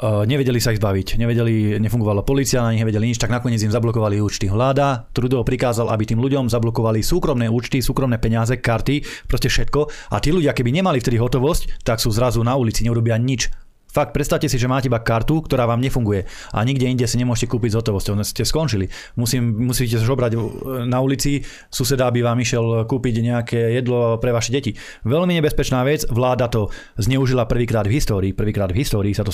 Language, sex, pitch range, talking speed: Slovak, male, 110-130 Hz, 185 wpm